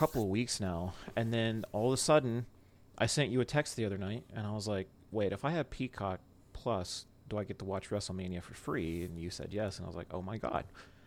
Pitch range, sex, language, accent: 95-110 Hz, male, English, American